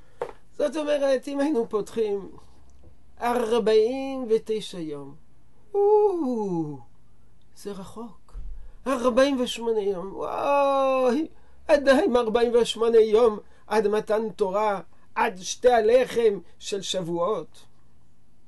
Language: Hebrew